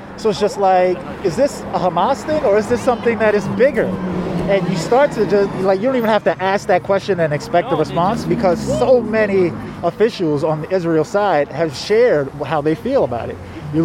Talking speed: 215 wpm